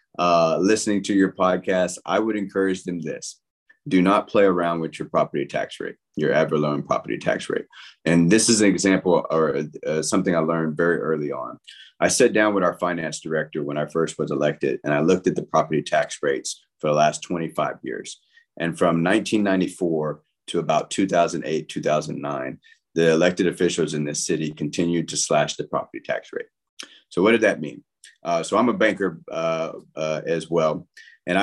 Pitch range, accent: 85-105 Hz, American